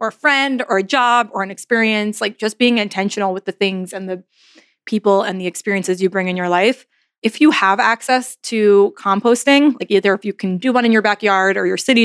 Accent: American